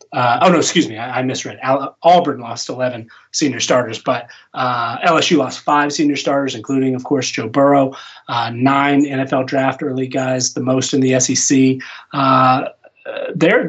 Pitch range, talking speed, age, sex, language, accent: 130-150 Hz, 165 wpm, 30-49, male, English, American